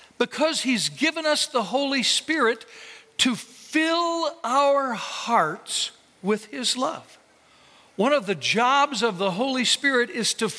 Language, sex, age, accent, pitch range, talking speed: English, male, 60-79, American, 205-275 Hz, 135 wpm